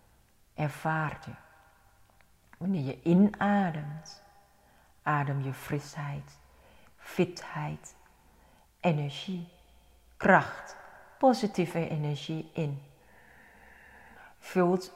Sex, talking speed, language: female, 60 wpm, English